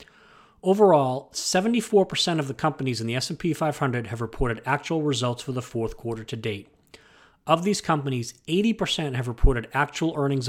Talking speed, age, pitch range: 155 wpm, 30-49, 115-155 Hz